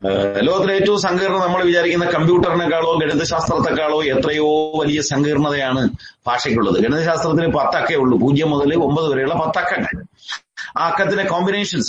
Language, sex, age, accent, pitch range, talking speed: Malayalam, male, 30-49, native, 145-200 Hz, 110 wpm